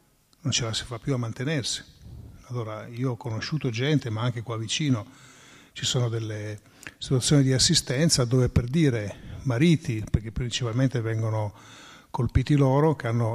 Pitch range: 115-140 Hz